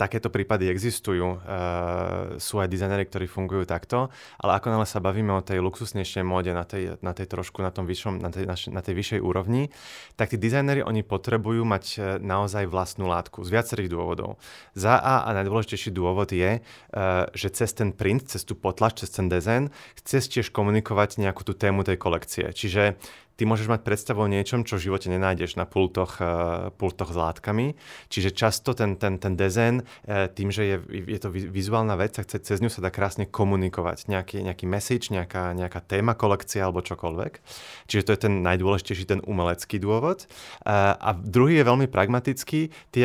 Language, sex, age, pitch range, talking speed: Slovak, male, 30-49, 95-115 Hz, 180 wpm